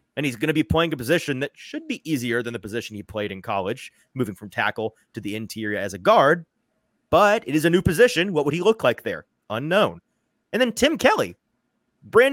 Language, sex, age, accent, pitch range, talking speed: English, male, 30-49, American, 120-190 Hz, 225 wpm